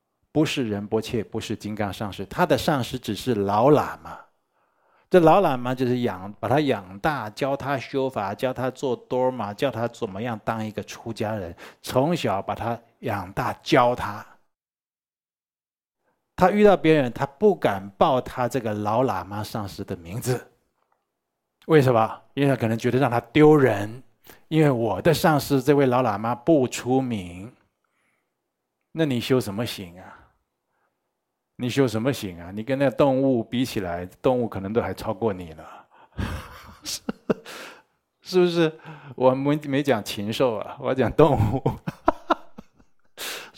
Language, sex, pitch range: Chinese, male, 110-150 Hz